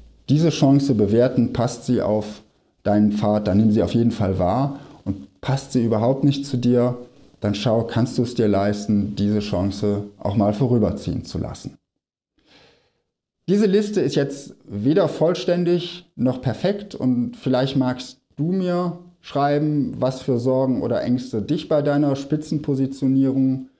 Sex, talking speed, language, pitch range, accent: male, 150 wpm, German, 105-145 Hz, German